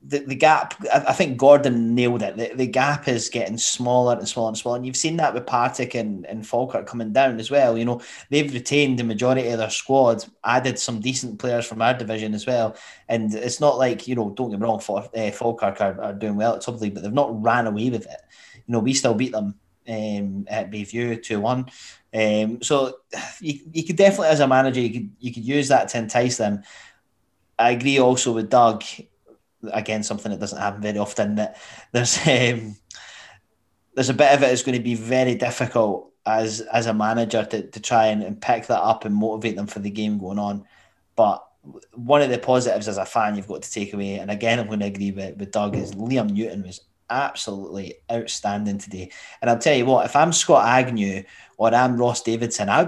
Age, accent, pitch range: 20-39, British, 105-125 Hz